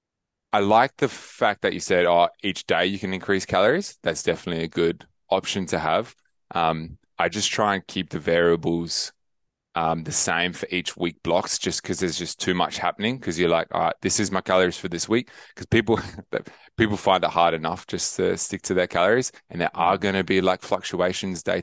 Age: 20-39